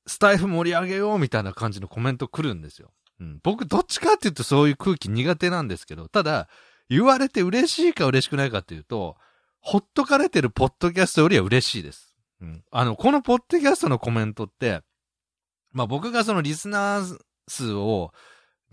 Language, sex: Japanese, male